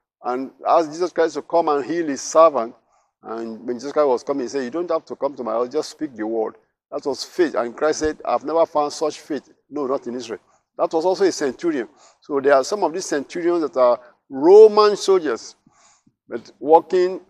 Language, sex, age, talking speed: English, male, 50-69, 220 wpm